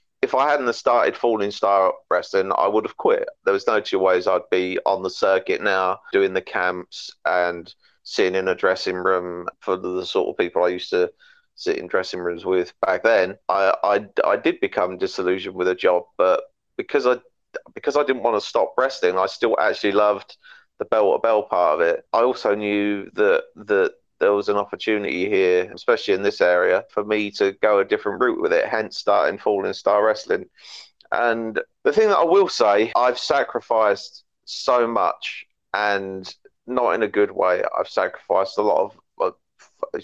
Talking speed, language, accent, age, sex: 190 wpm, English, British, 30-49, male